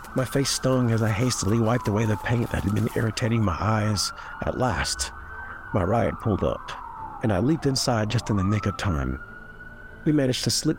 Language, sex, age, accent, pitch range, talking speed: English, male, 50-69, American, 105-125 Hz, 200 wpm